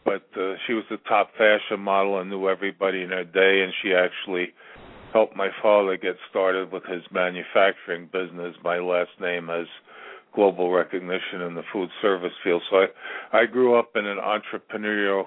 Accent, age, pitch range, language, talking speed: American, 50-69, 95-110 Hz, English, 175 wpm